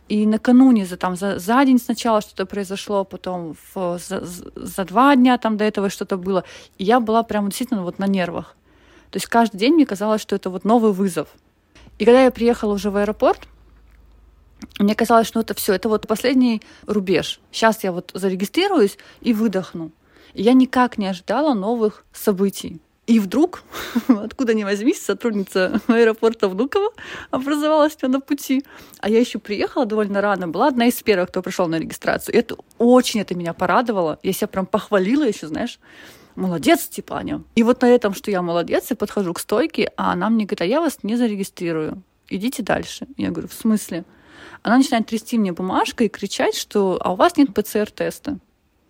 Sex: female